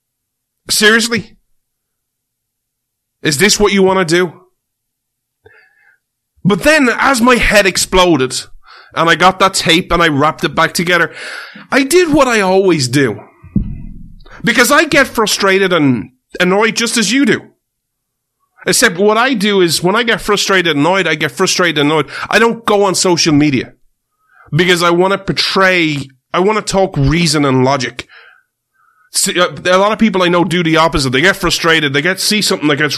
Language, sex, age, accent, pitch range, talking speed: English, male, 30-49, Irish, 140-195 Hz, 165 wpm